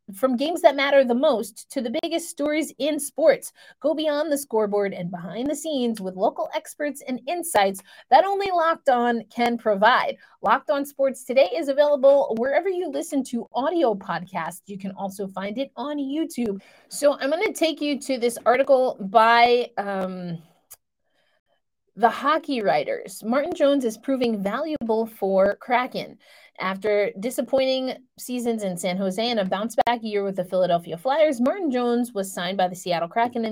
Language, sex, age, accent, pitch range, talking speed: English, female, 30-49, American, 195-280 Hz, 170 wpm